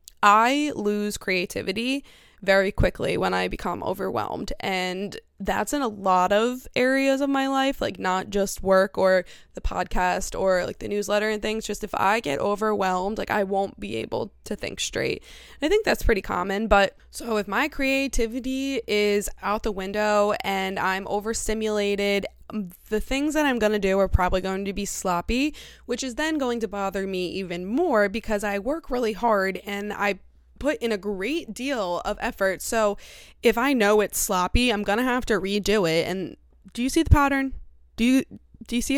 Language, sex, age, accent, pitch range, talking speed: English, female, 20-39, American, 195-240 Hz, 190 wpm